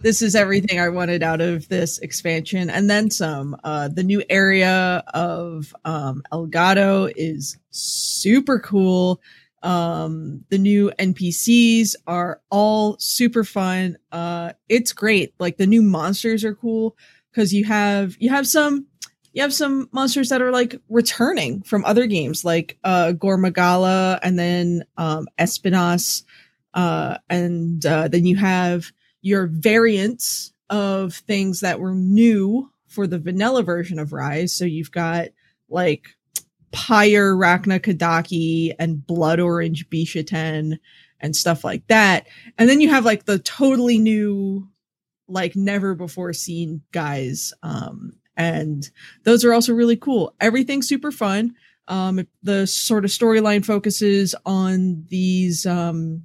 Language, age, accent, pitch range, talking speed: English, 20-39, American, 170-210 Hz, 140 wpm